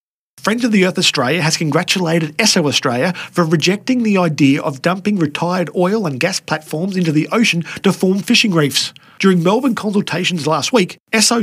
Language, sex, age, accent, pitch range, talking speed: English, male, 40-59, Australian, 155-195 Hz, 175 wpm